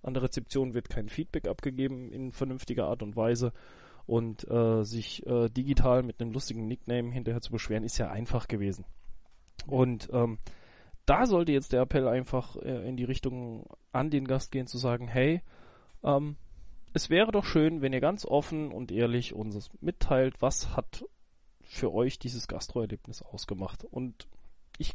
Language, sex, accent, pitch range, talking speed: German, male, German, 115-140 Hz, 165 wpm